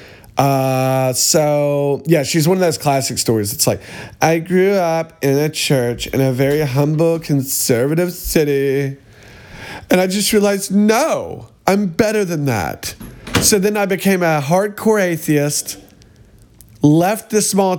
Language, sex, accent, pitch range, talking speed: English, male, American, 125-185 Hz, 140 wpm